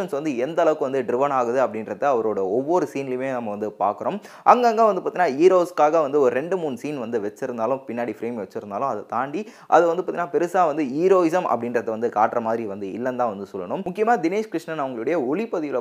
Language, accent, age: Tamil, native, 20-39